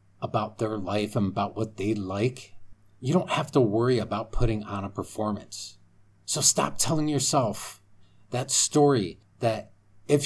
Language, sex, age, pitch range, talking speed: English, male, 40-59, 100-130 Hz, 150 wpm